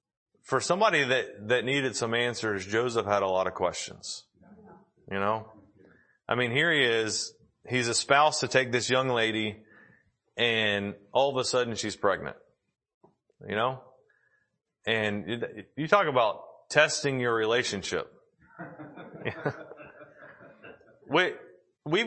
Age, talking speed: 30-49, 120 wpm